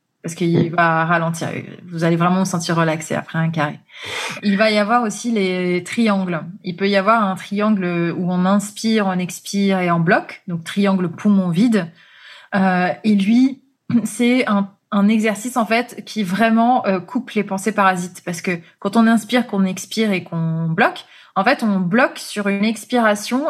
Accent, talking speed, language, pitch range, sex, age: French, 180 wpm, French, 180-225 Hz, female, 20-39